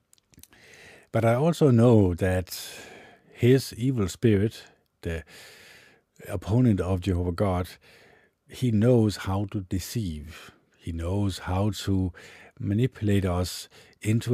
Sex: male